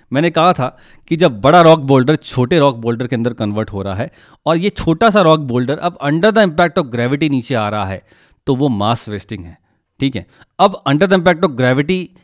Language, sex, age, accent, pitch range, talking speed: Hindi, male, 30-49, native, 115-165 Hz, 225 wpm